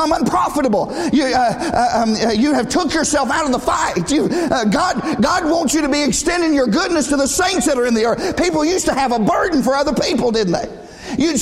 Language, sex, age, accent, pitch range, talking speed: English, male, 50-69, American, 210-315 Hz, 230 wpm